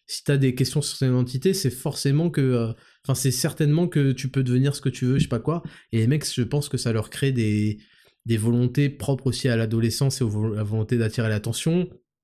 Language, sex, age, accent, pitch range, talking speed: French, male, 20-39, French, 120-145 Hz, 245 wpm